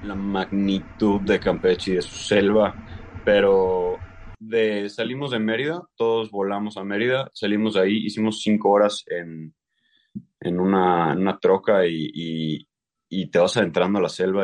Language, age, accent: English, 20-39, Mexican